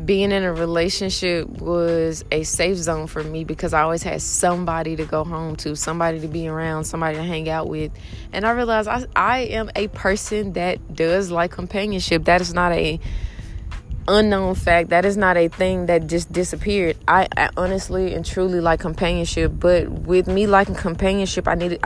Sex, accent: female, American